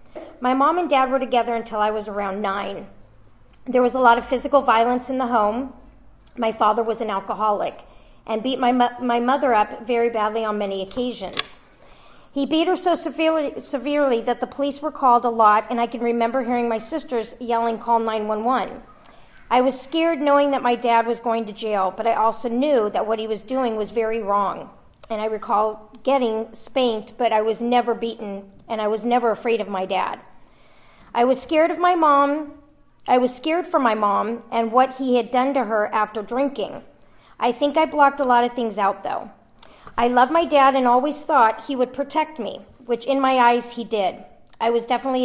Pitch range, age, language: 220-265 Hz, 40-59, English